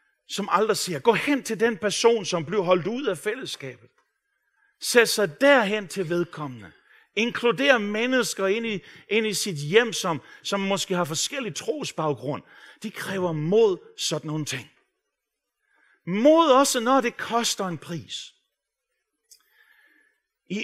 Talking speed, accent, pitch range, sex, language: 135 wpm, native, 150-230 Hz, male, Danish